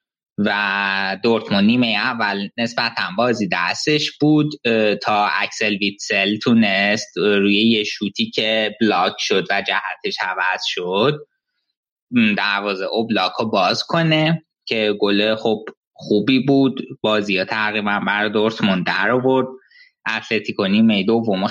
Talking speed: 115 wpm